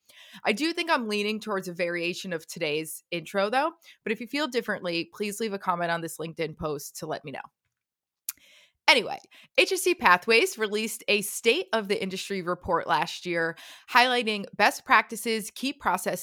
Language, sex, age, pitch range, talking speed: English, female, 20-39, 180-235 Hz, 160 wpm